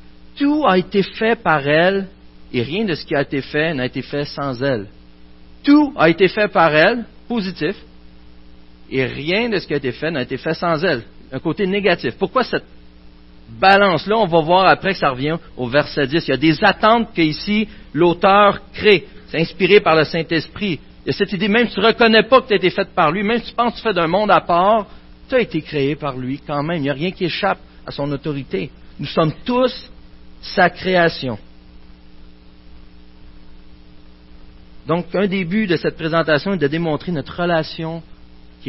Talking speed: 205 wpm